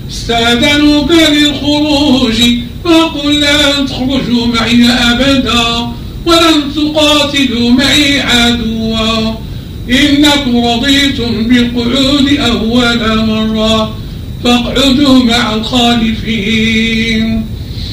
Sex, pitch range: male, 225-285 Hz